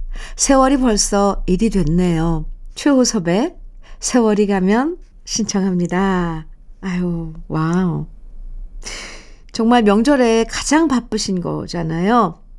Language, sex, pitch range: Korean, female, 175-235 Hz